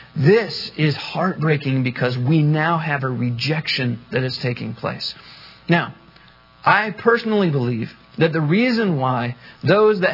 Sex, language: male, English